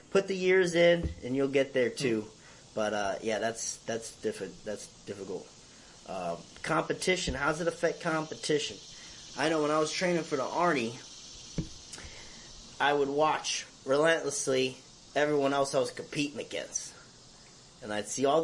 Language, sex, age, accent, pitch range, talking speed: English, male, 30-49, American, 125-150 Hz, 150 wpm